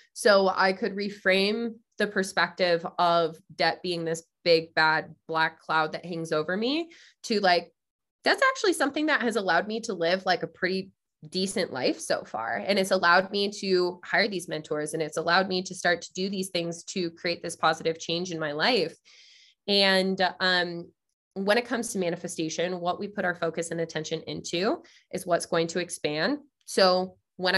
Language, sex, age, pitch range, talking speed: English, female, 20-39, 170-195 Hz, 185 wpm